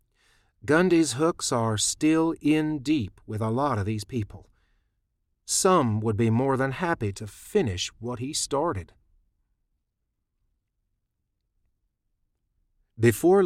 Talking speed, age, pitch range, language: 105 wpm, 40-59, 105-135 Hz, English